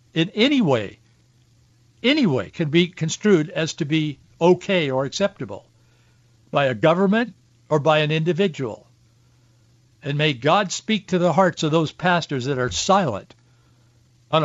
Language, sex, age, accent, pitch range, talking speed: English, male, 60-79, American, 120-155 Hz, 145 wpm